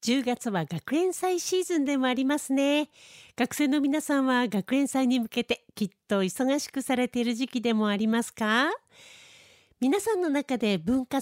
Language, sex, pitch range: Japanese, female, 215-290 Hz